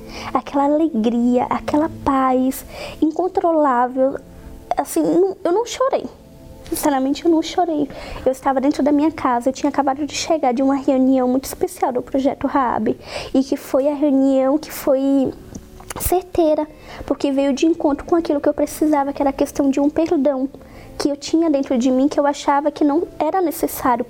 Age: 10-29